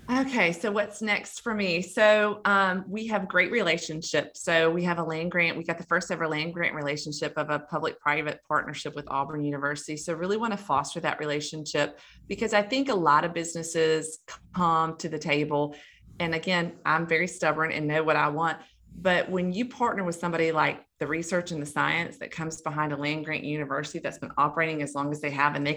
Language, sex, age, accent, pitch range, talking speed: English, female, 30-49, American, 150-195 Hz, 210 wpm